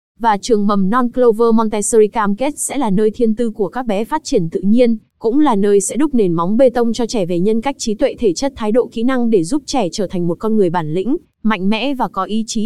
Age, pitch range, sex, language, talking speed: 20-39, 210-250 Hz, female, Vietnamese, 275 wpm